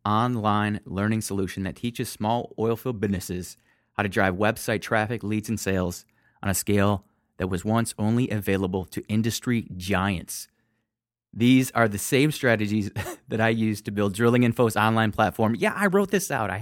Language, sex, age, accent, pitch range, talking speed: English, male, 30-49, American, 100-125 Hz, 170 wpm